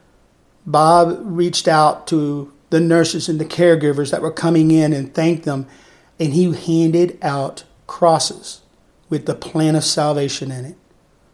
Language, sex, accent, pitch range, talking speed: English, male, American, 155-185 Hz, 150 wpm